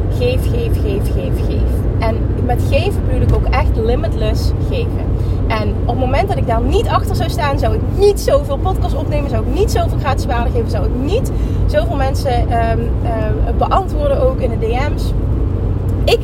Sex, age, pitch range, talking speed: female, 30-49, 95-110 Hz, 190 wpm